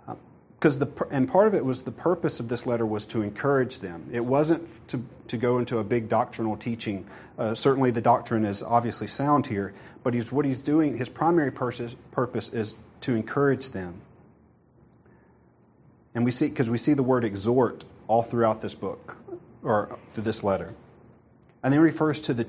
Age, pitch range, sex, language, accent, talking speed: 40-59, 110-130 Hz, male, English, American, 185 wpm